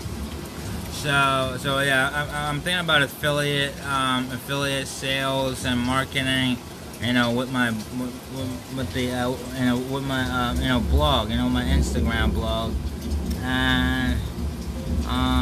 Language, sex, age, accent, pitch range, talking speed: English, male, 20-39, American, 110-135 Hz, 115 wpm